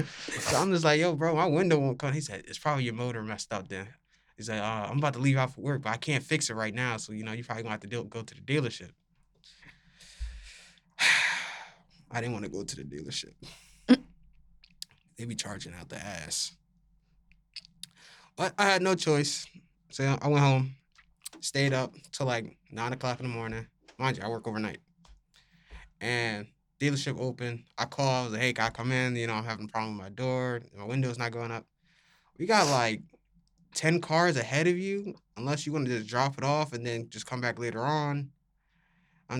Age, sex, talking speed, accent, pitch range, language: 20-39, male, 210 wpm, American, 120-165 Hz, English